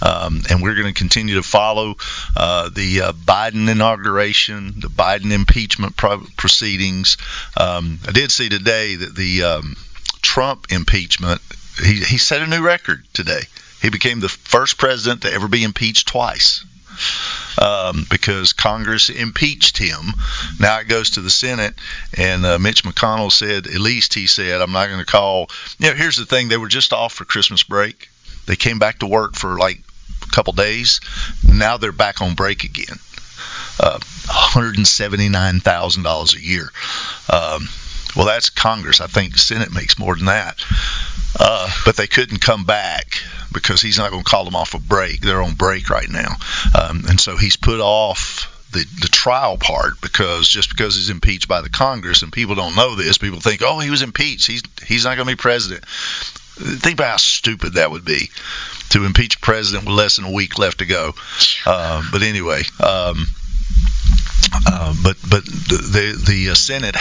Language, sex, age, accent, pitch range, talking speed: English, male, 50-69, American, 90-110 Hz, 175 wpm